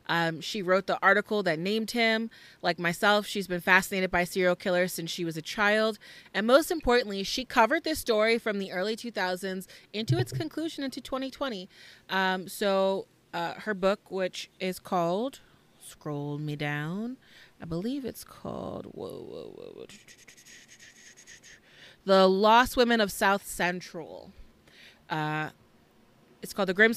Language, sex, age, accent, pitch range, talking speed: English, female, 20-39, American, 175-230 Hz, 145 wpm